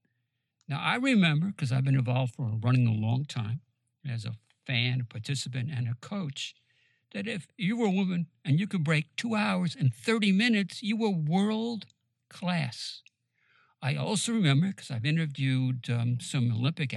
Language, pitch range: English, 125-175 Hz